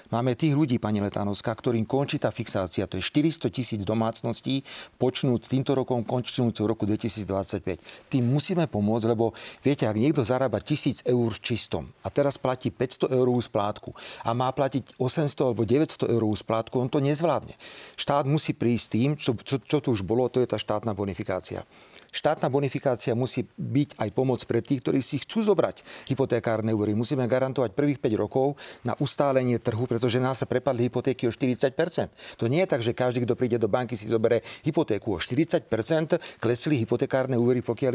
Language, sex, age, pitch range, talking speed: Slovak, male, 40-59, 110-140 Hz, 165 wpm